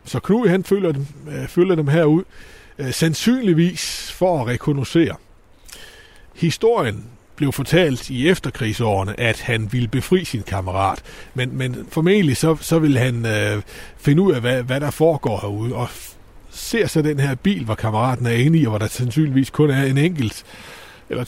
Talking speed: 170 wpm